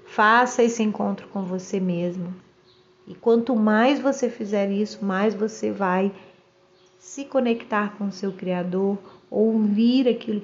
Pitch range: 190-235 Hz